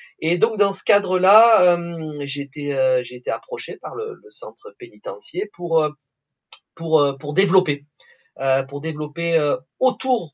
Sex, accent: male, French